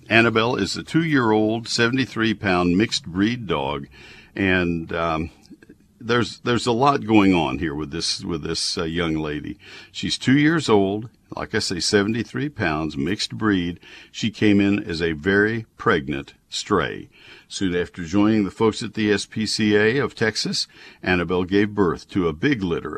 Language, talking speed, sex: English, 150 wpm, male